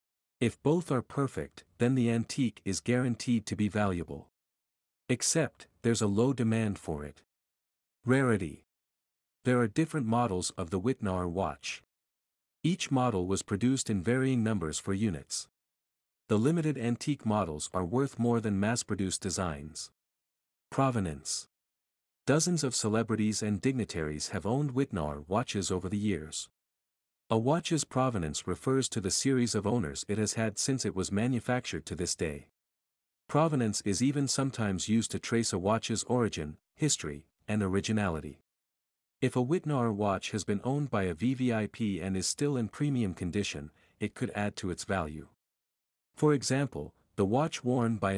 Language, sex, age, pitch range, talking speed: English, male, 50-69, 90-125 Hz, 150 wpm